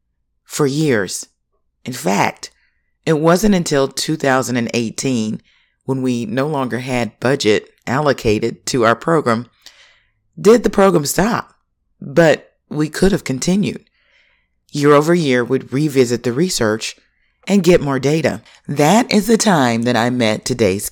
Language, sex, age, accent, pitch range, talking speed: English, female, 40-59, American, 115-155 Hz, 130 wpm